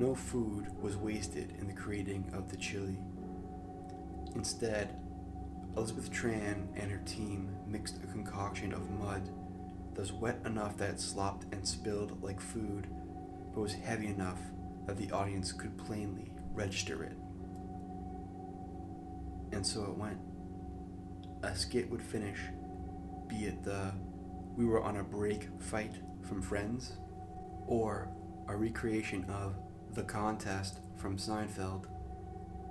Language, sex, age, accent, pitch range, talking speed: English, male, 20-39, American, 95-105 Hz, 130 wpm